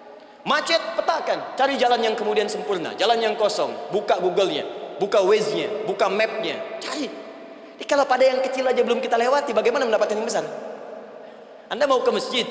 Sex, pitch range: male, 185-290 Hz